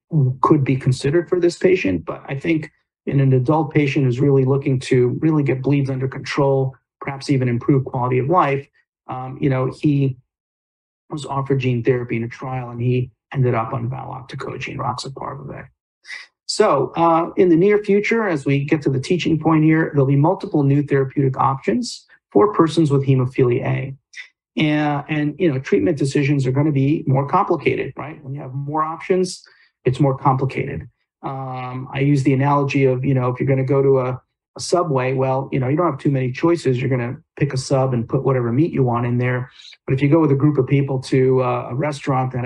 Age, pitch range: 40-59, 130-155 Hz